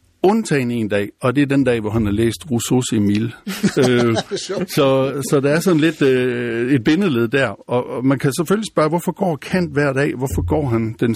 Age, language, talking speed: 60-79, Danish, 200 wpm